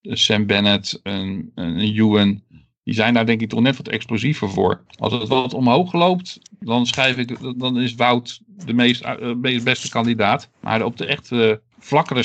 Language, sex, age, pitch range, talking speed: Dutch, male, 50-69, 105-125 Hz, 170 wpm